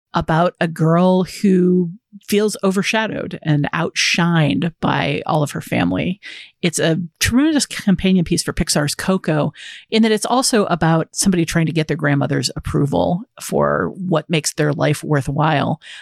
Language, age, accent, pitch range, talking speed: English, 50-69, American, 150-190 Hz, 145 wpm